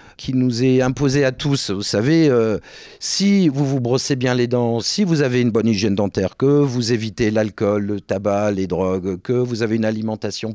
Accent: French